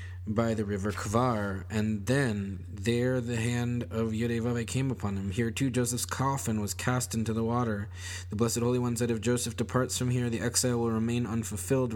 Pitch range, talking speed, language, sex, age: 95-120 Hz, 190 wpm, English, male, 20-39